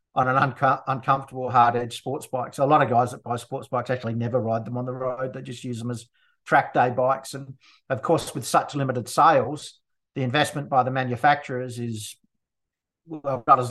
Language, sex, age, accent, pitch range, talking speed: English, male, 50-69, Australian, 120-130 Hz, 210 wpm